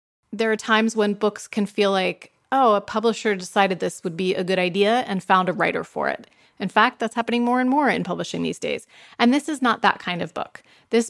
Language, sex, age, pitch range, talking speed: English, female, 30-49, 190-235 Hz, 240 wpm